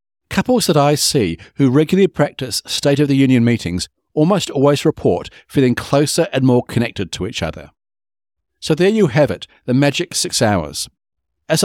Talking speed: 170 wpm